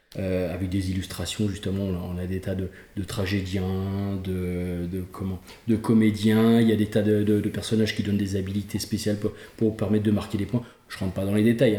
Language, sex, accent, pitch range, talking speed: French, male, French, 100-125 Hz, 235 wpm